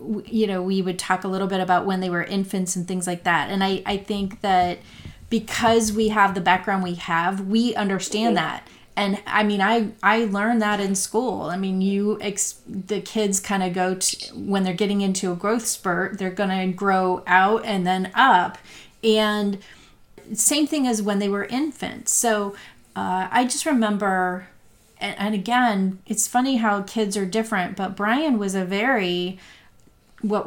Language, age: English, 30-49